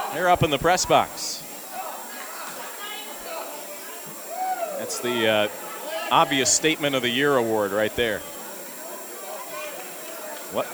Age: 40-59